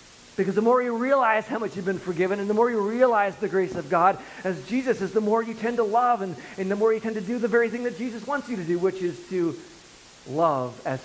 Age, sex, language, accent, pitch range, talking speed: 40-59, male, English, American, 135-200 Hz, 270 wpm